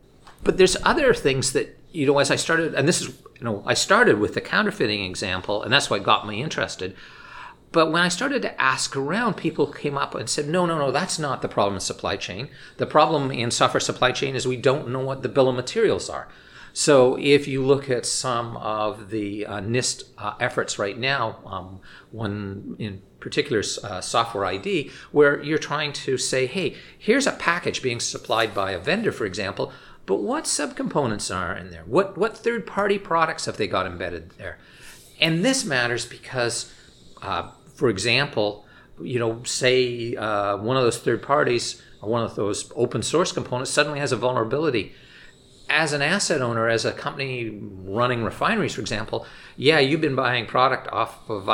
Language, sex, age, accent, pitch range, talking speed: English, male, 50-69, American, 115-155 Hz, 190 wpm